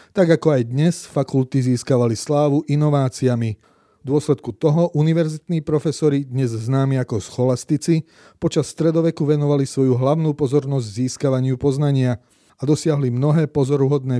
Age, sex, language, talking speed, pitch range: 30-49, male, Slovak, 125 wpm, 125-155 Hz